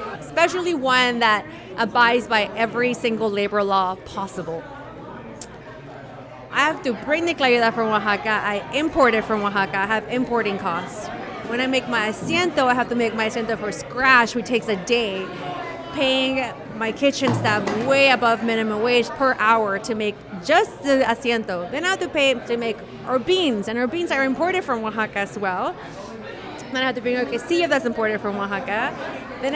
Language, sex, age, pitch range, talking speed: English, female, 30-49, 220-275 Hz, 185 wpm